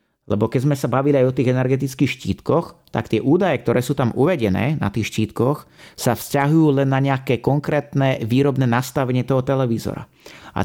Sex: male